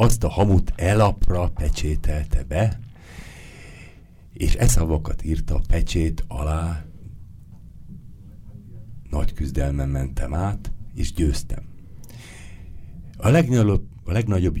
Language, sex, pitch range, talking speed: Hungarian, male, 75-90 Hz, 95 wpm